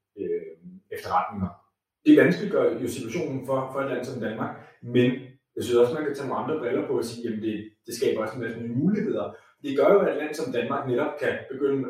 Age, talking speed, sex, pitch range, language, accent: 30-49, 230 wpm, male, 105-160 Hz, Danish, native